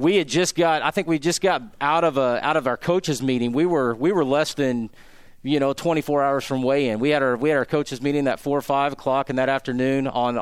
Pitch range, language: 130-160 Hz, English